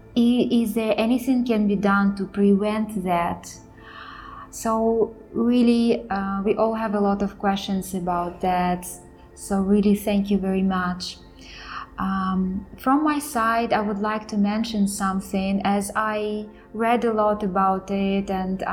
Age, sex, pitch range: 20-39, female, 195-220 Hz